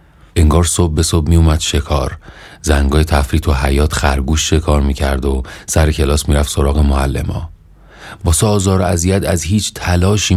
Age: 30-49